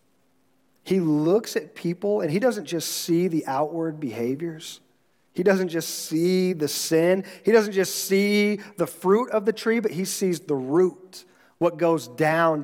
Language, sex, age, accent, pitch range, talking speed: English, male, 40-59, American, 160-215 Hz, 165 wpm